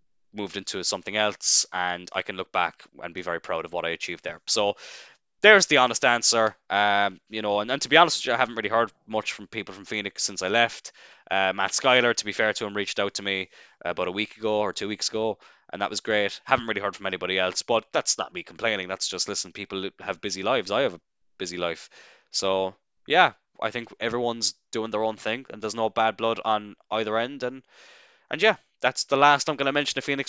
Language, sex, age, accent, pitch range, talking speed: English, male, 10-29, Irish, 105-155 Hz, 240 wpm